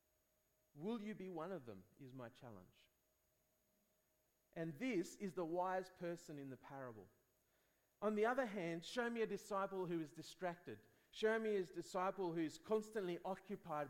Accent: Australian